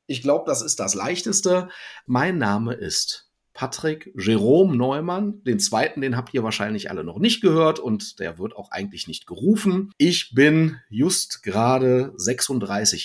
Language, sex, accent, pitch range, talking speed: German, male, German, 120-180 Hz, 155 wpm